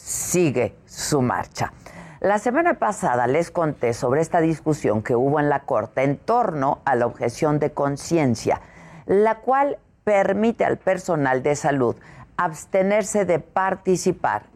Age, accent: 50-69, Mexican